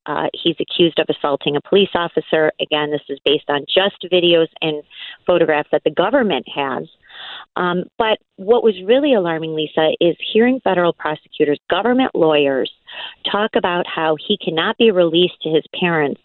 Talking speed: 165 wpm